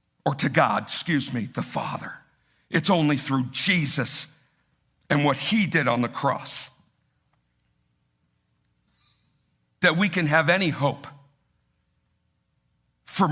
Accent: American